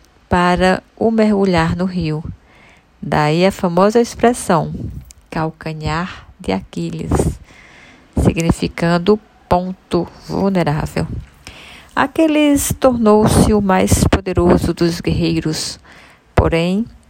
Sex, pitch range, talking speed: female, 155-215 Hz, 80 wpm